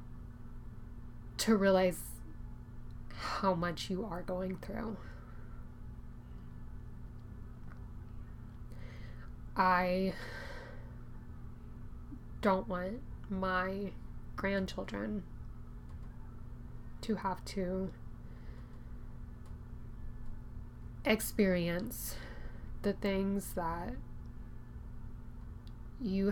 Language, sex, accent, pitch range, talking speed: English, female, American, 125-190 Hz, 50 wpm